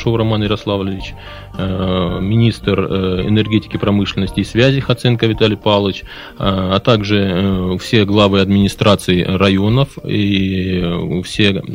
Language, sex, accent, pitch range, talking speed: Russian, male, native, 95-115 Hz, 90 wpm